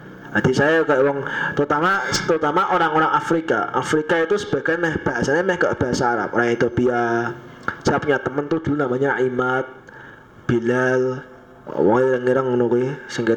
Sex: male